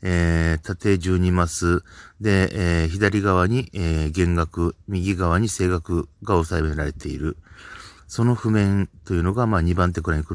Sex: male